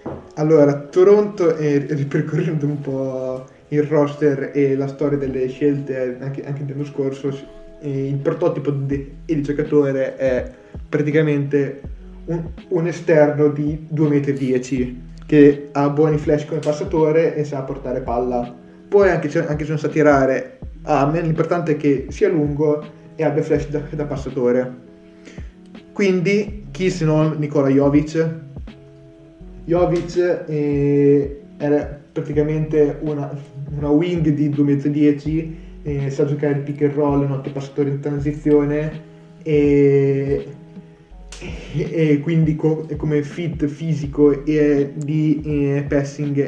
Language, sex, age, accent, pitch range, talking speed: Italian, male, 20-39, native, 140-155 Hz, 130 wpm